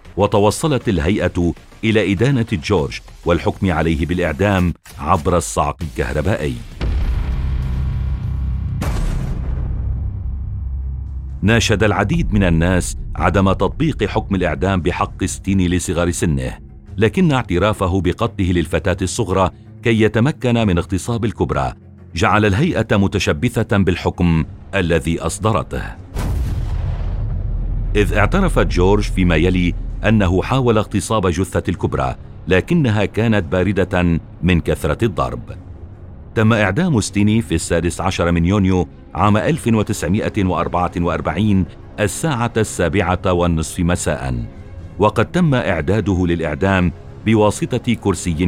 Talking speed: 95 wpm